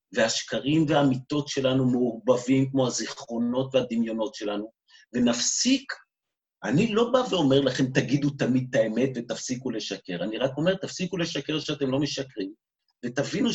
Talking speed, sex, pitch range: 130 wpm, male, 130-175 Hz